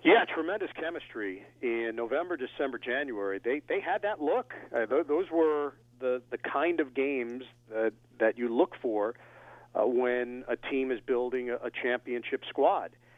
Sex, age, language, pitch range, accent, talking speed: male, 50-69, English, 120-155 Hz, American, 155 wpm